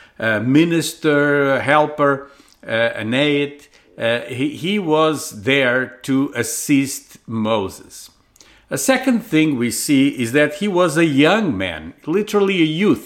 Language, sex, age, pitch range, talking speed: English, male, 50-69, 120-165 Hz, 140 wpm